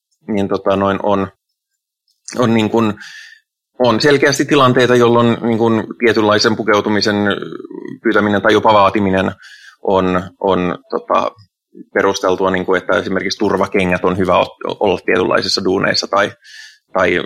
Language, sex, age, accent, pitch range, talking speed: Finnish, male, 20-39, native, 95-130 Hz, 120 wpm